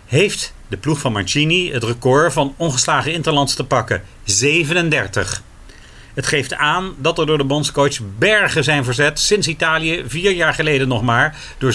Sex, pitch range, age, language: male, 130-170 Hz, 40-59, Dutch